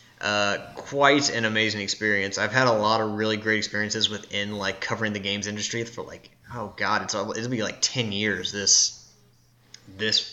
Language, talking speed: English, 180 wpm